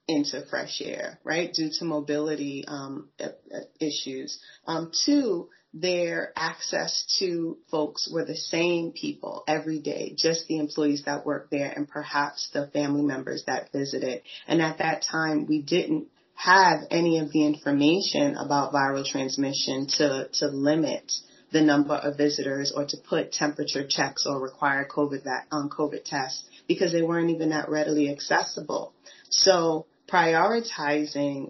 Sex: female